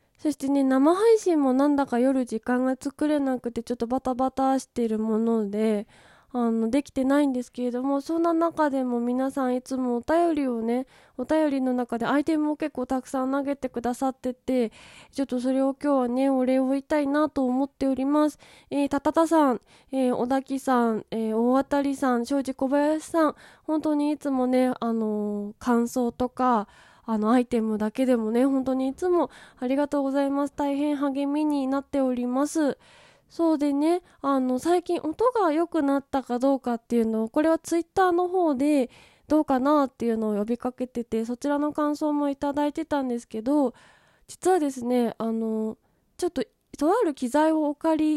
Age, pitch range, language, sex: 20-39, 245-290 Hz, Japanese, female